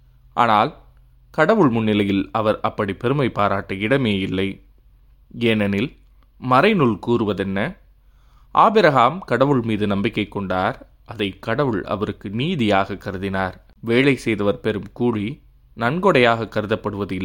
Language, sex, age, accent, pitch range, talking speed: Tamil, male, 20-39, native, 100-120 Hz, 100 wpm